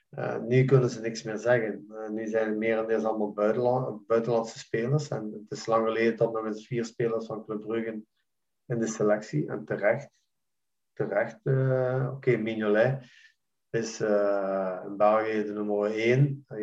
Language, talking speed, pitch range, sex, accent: Dutch, 170 wpm, 105-120 Hz, male, Dutch